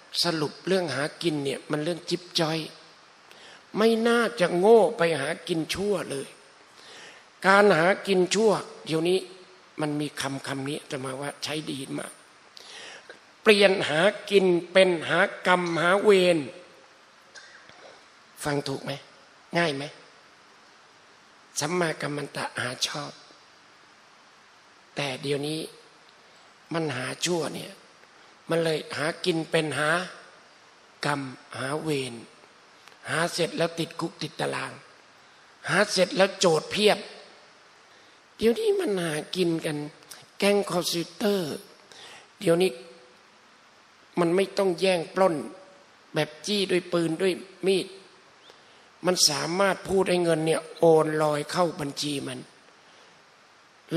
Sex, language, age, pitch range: male, Thai, 60-79, 150-185 Hz